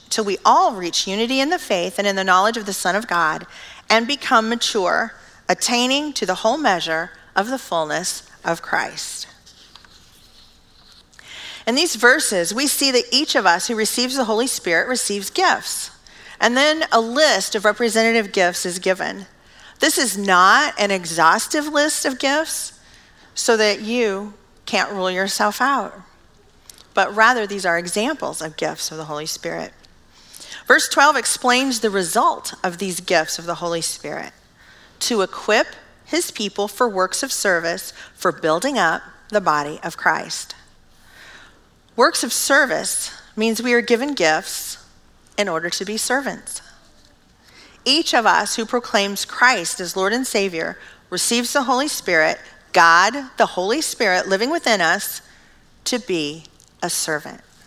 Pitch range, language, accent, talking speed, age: 185-255 Hz, English, American, 150 wpm, 40-59